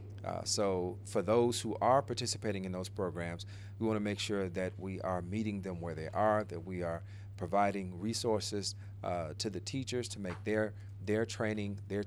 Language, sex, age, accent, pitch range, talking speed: English, male, 40-59, American, 100-110 Hz, 190 wpm